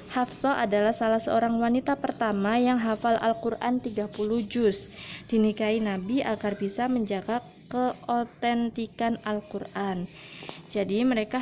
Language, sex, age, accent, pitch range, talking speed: Indonesian, female, 20-39, native, 195-235 Hz, 105 wpm